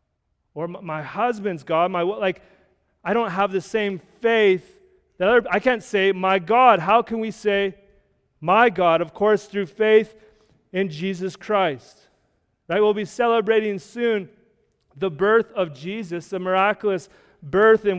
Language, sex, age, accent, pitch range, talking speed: English, male, 30-49, American, 180-210 Hz, 150 wpm